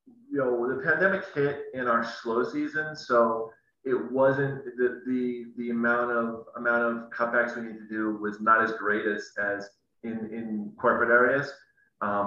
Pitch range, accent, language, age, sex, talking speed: 105-125 Hz, American, English, 30-49, male, 170 wpm